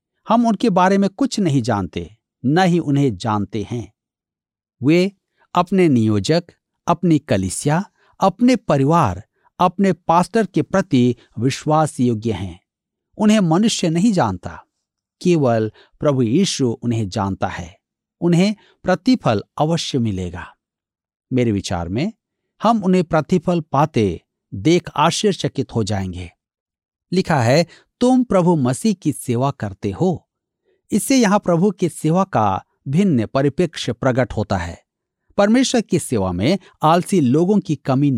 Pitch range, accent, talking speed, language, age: 110-185 Hz, native, 120 wpm, Hindi, 50-69